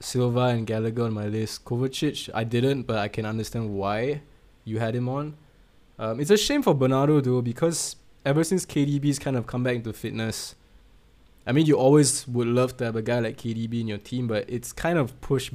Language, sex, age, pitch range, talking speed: English, male, 20-39, 115-140 Hz, 210 wpm